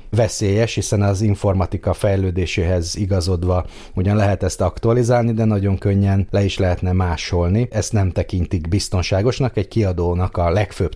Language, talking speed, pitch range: Hungarian, 135 wpm, 90-105 Hz